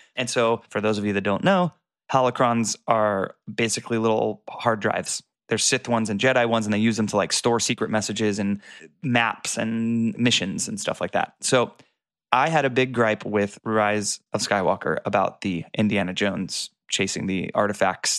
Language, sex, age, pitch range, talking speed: English, male, 20-39, 105-120 Hz, 180 wpm